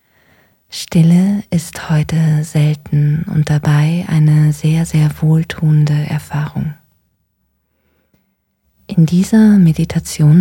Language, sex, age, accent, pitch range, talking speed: German, female, 20-39, German, 150-165 Hz, 80 wpm